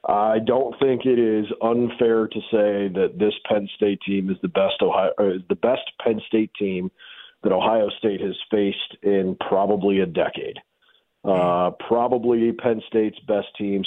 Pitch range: 100-135 Hz